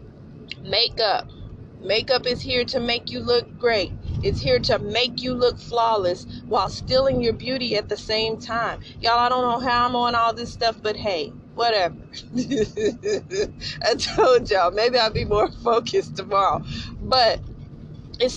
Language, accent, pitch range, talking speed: English, American, 220-265 Hz, 155 wpm